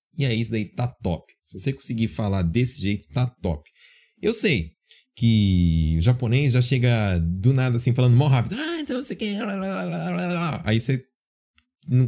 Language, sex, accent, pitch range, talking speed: Portuguese, male, Brazilian, 90-130 Hz, 170 wpm